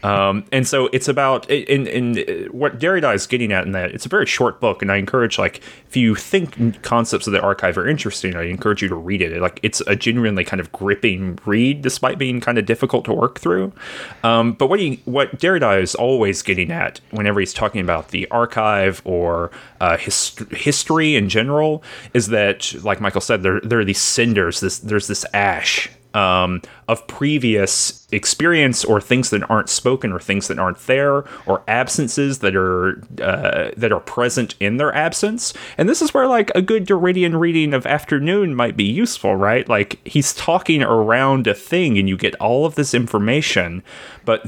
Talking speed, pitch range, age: 195 wpm, 100-140 Hz, 30-49